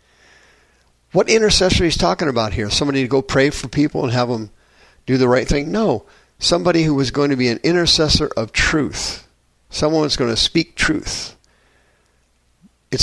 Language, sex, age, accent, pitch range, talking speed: English, male, 50-69, American, 115-160 Hz, 170 wpm